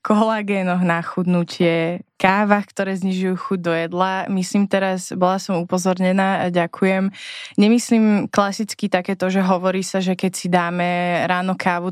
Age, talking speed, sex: 20-39, 140 wpm, female